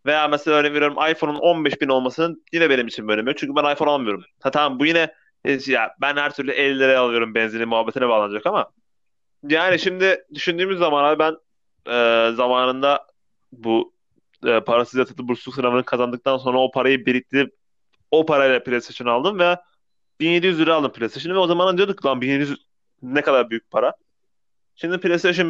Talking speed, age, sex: 165 wpm, 30-49, male